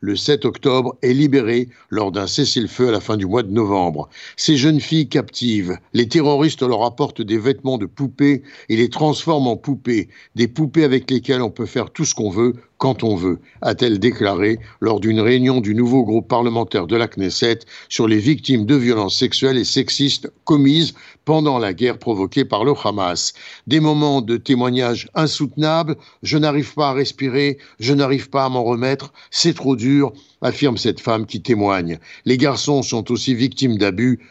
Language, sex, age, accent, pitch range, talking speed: French, male, 60-79, French, 115-145 Hz, 180 wpm